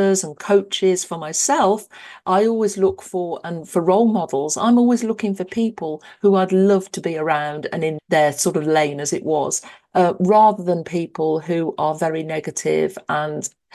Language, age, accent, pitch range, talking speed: English, 50-69, British, 165-205 Hz, 180 wpm